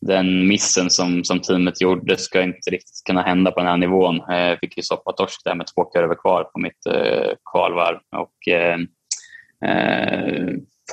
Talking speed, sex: 170 wpm, male